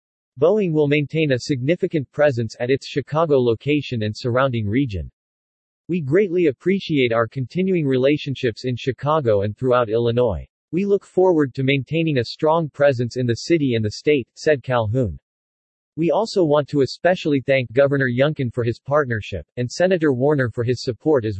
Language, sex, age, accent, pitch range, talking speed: English, male, 40-59, American, 120-150 Hz, 165 wpm